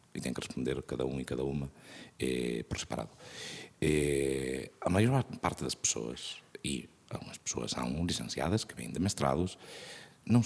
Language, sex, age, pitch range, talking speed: Portuguese, male, 60-79, 70-95 Hz, 160 wpm